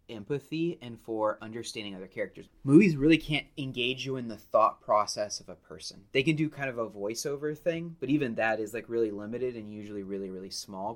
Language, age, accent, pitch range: English, 20-39, American, 100-130 Hz